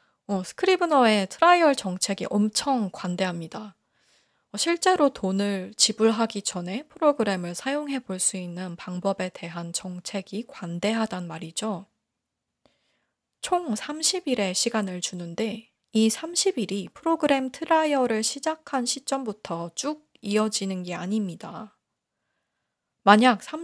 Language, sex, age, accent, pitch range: Korean, female, 20-39, native, 185-265 Hz